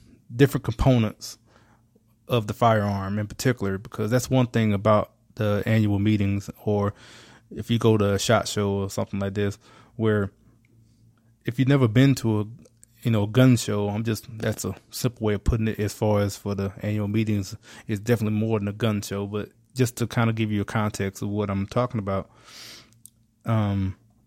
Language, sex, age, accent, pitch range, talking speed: English, male, 20-39, American, 105-120 Hz, 190 wpm